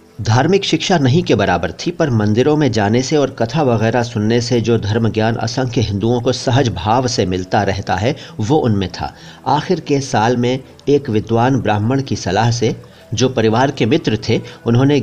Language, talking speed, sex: Hindi, 190 wpm, male